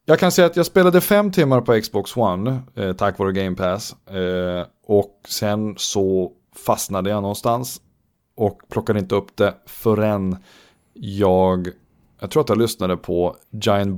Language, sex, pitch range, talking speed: Swedish, male, 95-120 Hz, 150 wpm